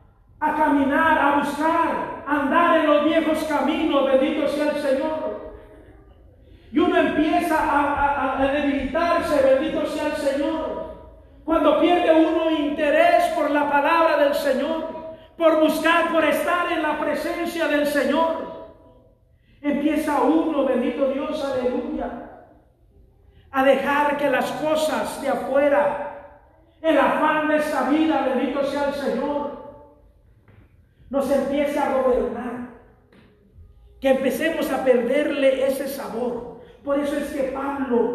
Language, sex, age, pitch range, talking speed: Spanish, male, 40-59, 275-315 Hz, 125 wpm